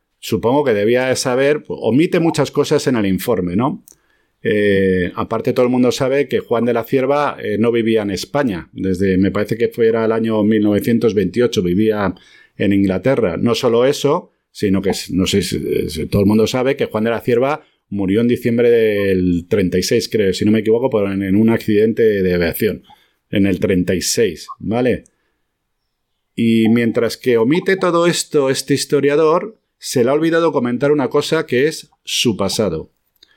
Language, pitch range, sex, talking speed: Spanish, 105-140 Hz, male, 175 wpm